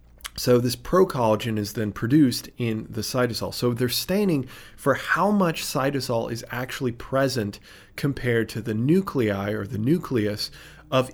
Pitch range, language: 110-130 Hz, English